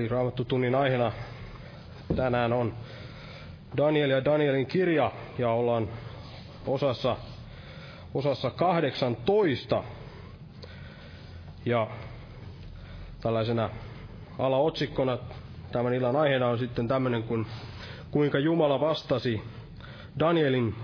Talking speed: 85 wpm